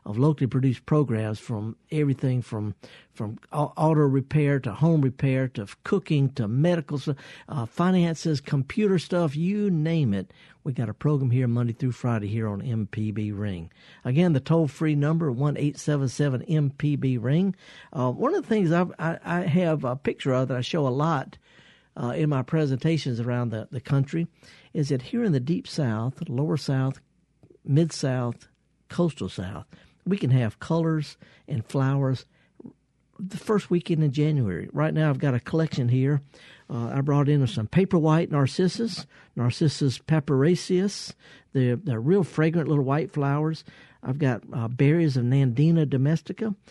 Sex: male